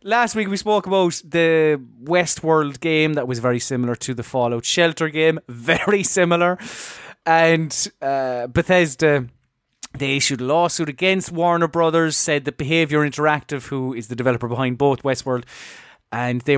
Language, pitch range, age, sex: English, 130-175 Hz, 20-39, male